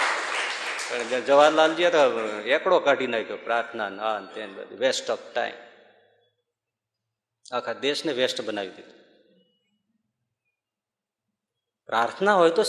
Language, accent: Gujarati, native